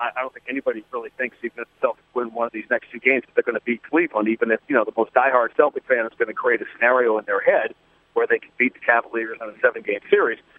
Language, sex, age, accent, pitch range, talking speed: English, male, 40-59, American, 120-165 Hz, 290 wpm